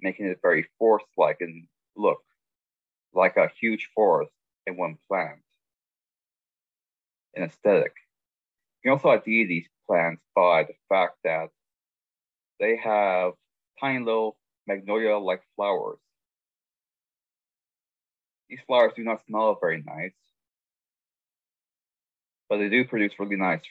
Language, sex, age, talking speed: English, male, 30-49, 110 wpm